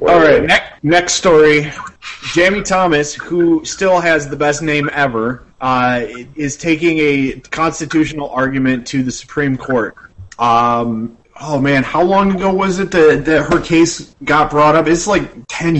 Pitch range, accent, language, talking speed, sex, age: 115-145 Hz, American, English, 160 wpm, male, 30-49